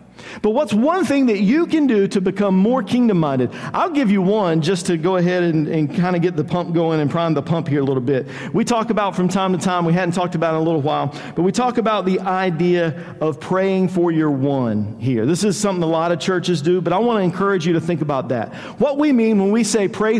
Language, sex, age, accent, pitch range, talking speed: English, male, 50-69, American, 165-210 Hz, 260 wpm